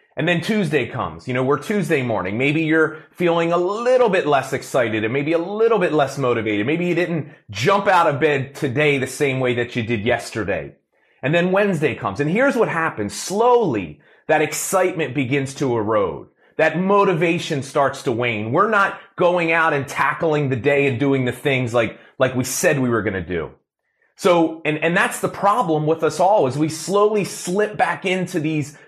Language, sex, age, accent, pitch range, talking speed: English, male, 30-49, American, 130-175 Hz, 195 wpm